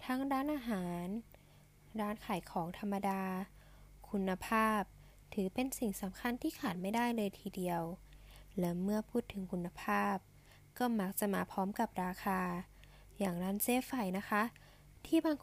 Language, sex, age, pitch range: Thai, female, 10-29, 185-225 Hz